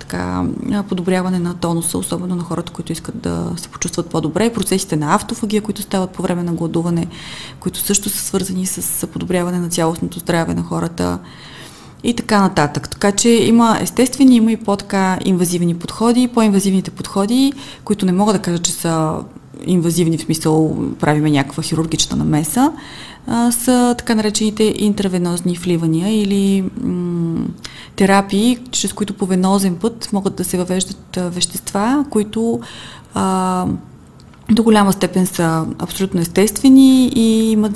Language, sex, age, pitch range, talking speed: Bulgarian, female, 30-49, 170-210 Hz, 140 wpm